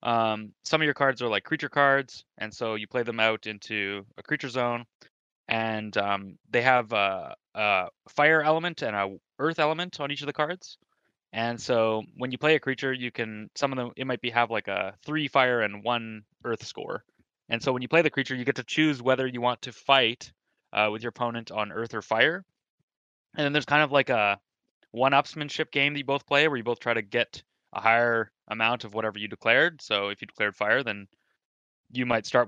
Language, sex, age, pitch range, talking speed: English, male, 20-39, 105-140 Hz, 220 wpm